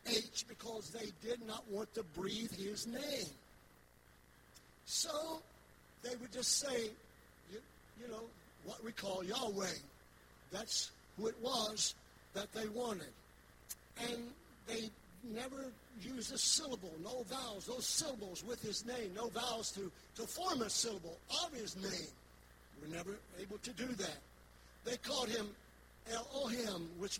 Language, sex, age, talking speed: English, male, 60-79, 140 wpm